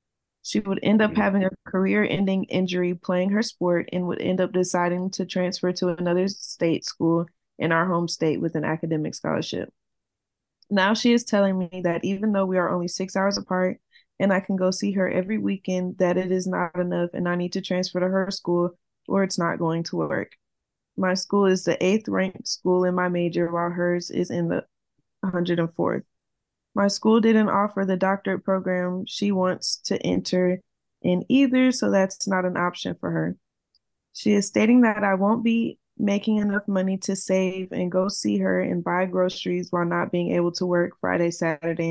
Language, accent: English, American